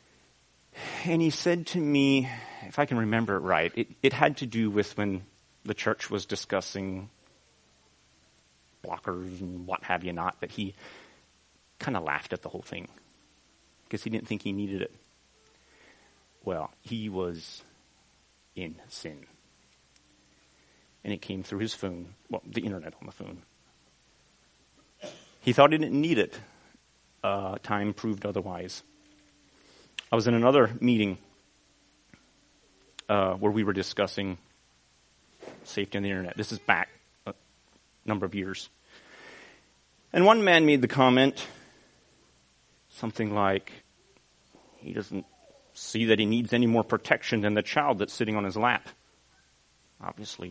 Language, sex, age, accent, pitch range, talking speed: English, male, 30-49, American, 70-110 Hz, 140 wpm